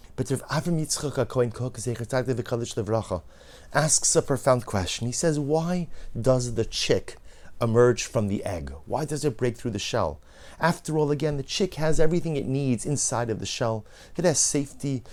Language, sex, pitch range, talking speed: English, male, 105-140 Hz, 165 wpm